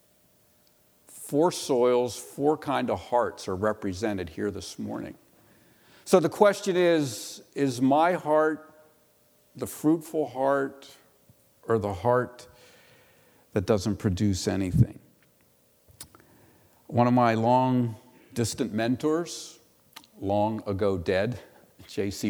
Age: 50-69